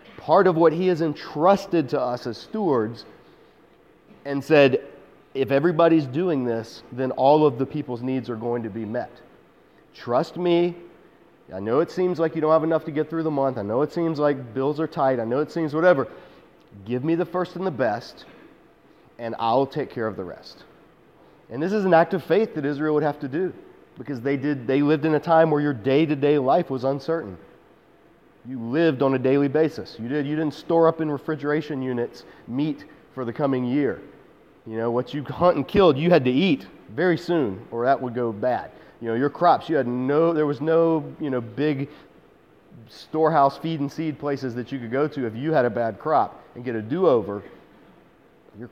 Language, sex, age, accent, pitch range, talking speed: English, male, 40-59, American, 125-160 Hz, 205 wpm